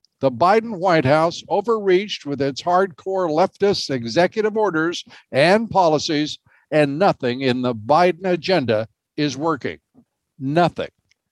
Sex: male